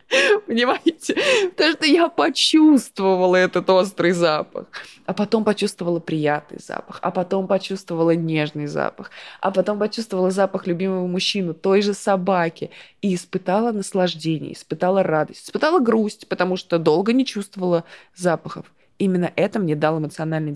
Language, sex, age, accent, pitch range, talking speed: Russian, female, 20-39, native, 175-230 Hz, 130 wpm